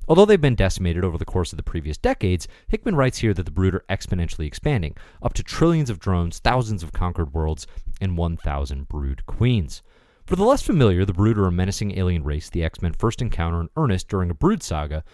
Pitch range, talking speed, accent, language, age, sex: 80-130 Hz, 215 wpm, American, English, 30-49, male